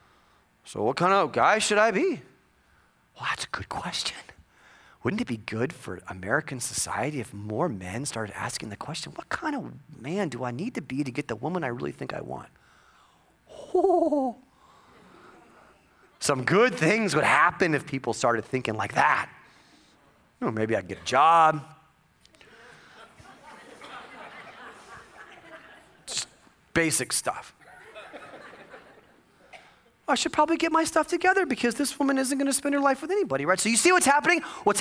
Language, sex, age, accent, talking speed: English, male, 30-49, American, 160 wpm